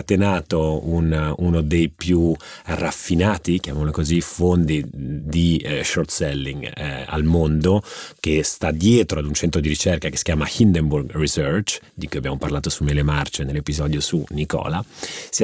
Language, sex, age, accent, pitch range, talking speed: Italian, male, 30-49, native, 75-95 Hz, 150 wpm